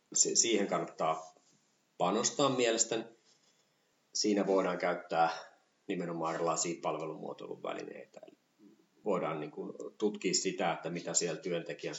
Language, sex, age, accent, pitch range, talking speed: Finnish, male, 30-49, native, 90-130 Hz, 90 wpm